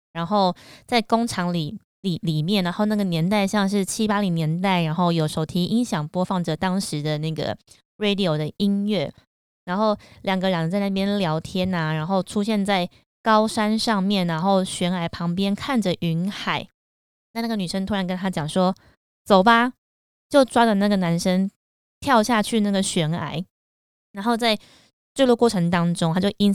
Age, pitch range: 20-39, 175-220 Hz